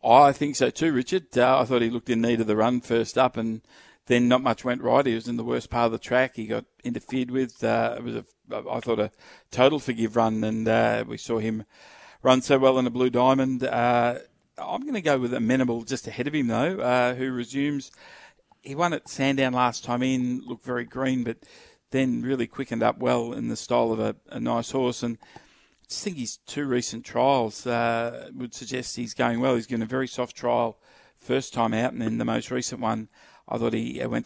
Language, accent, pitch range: English, Australian, 115-135 Hz